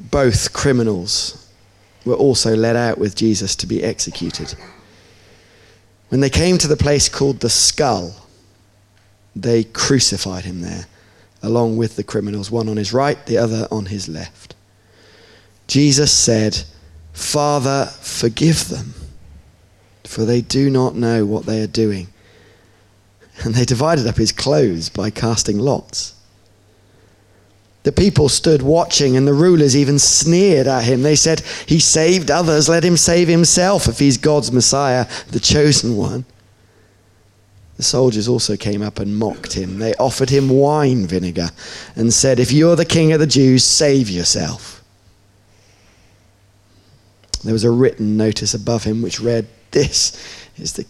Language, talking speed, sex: English, 145 wpm, male